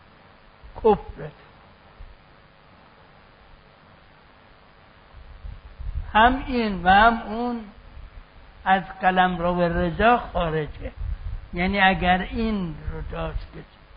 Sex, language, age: male, Persian, 60-79